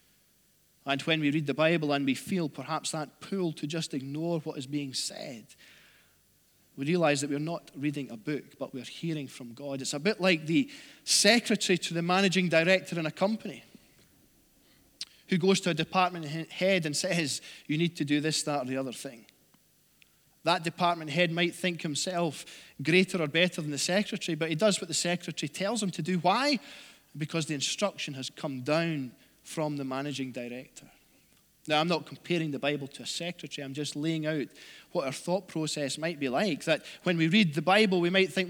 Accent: British